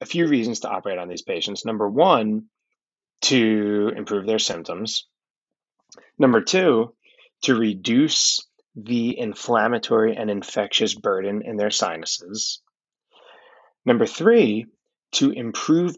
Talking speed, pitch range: 115 wpm, 105-175 Hz